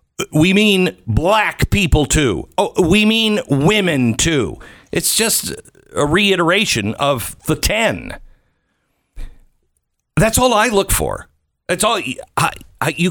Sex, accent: male, American